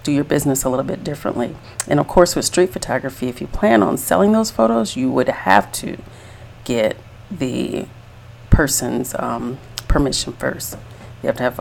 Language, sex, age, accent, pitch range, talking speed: English, female, 40-59, American, 120-150 Hz, 170 wpm